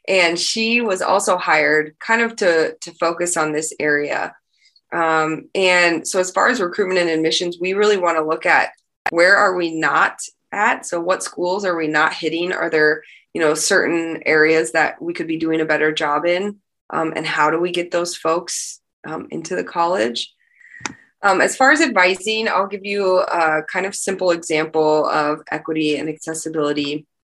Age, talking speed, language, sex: 20-39, 185 wpm, English, female